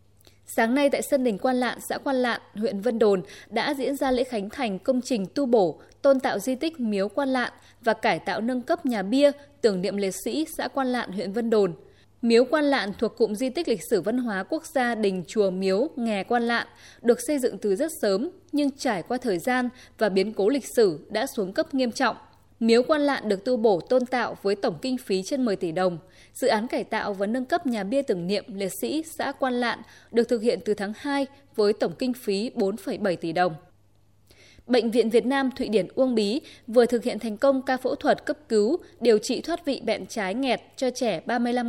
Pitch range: 200-265 Hz